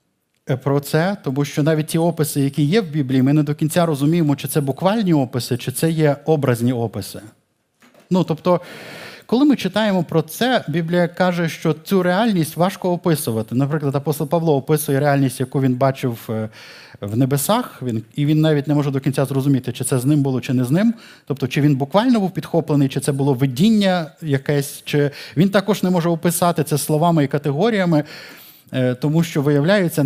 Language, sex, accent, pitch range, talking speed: Ukrainian, male, native, 135-175 Hz, 180 wpm